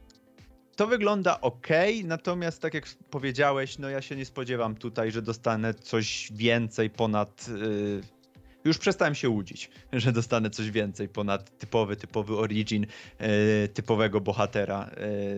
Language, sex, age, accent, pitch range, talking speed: Polish, male, 30-49, native, 105-135 Hz, 125 wpm